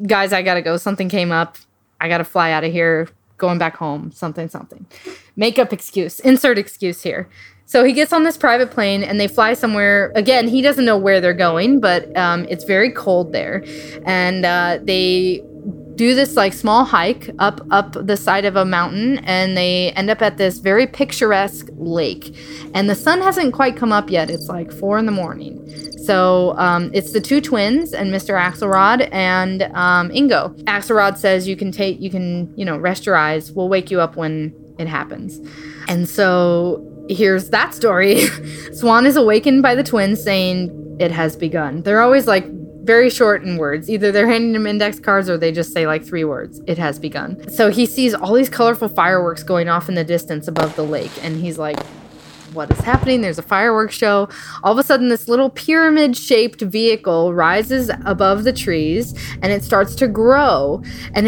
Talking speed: 195 wpm